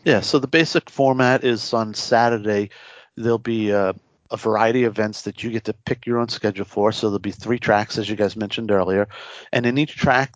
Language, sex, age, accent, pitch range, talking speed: English, male, 50-69, American, 105-130 Hz, 220 wpm